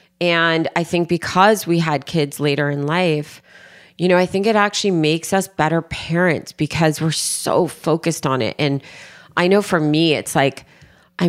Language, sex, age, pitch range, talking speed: English, female, 30-49, 150-185 Hz, 180 wpm